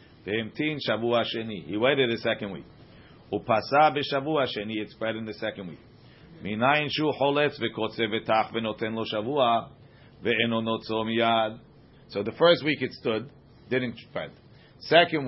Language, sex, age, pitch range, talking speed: English, male, 50-69, 115-135 Hz, 145 wpm